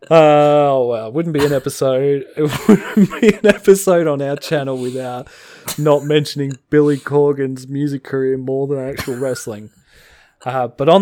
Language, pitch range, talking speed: English, 115-150 Hz, 165 wpm